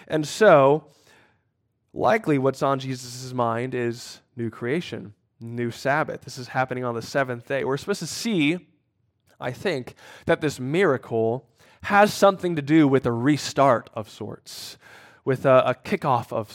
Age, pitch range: 10-29, 115-145 Hz